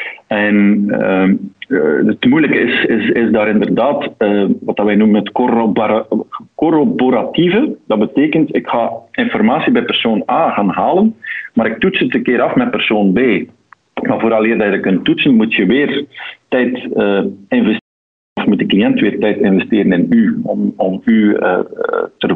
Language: Dutch